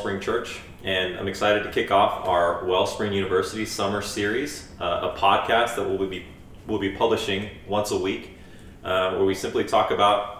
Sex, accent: male, American